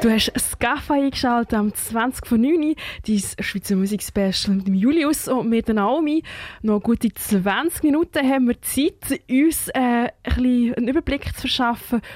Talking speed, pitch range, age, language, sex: 155 wpm, 205-245 Hz, 20-39, German, female